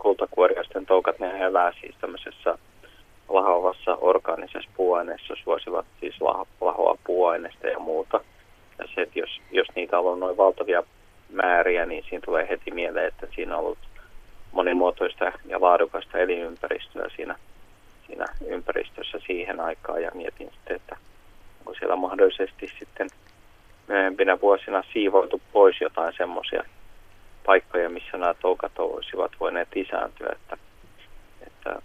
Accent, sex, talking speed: native, male, 125 wpm